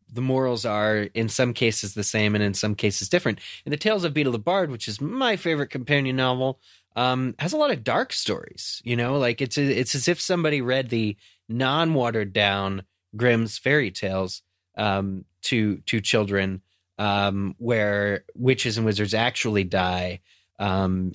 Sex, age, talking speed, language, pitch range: male, 20-39, 175 wpm, English, 95-125 Hz